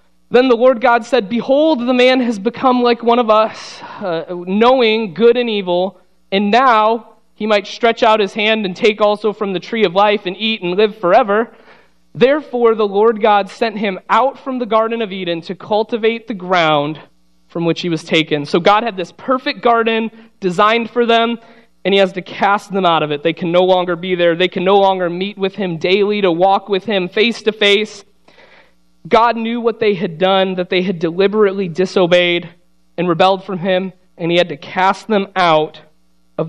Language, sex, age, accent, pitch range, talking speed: English, male, 30-49, American, 175-215 Hz, 200 wpm